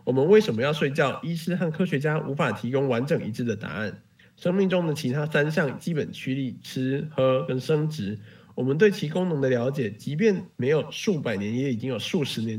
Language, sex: Chinese, male